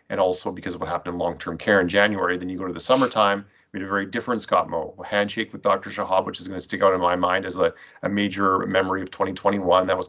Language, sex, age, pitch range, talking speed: English, male, 30-49, 90-105 Hz, 280 wpm